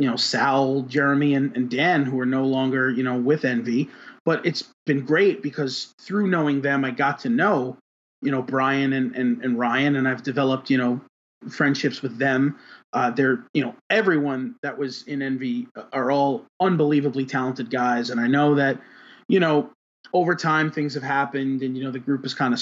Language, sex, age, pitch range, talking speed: English, male, 30-49, 125-145 Hz, 200 wpm